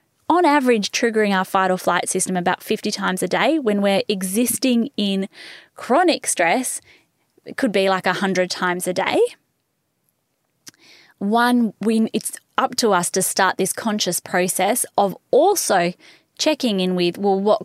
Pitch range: 180-220 Hz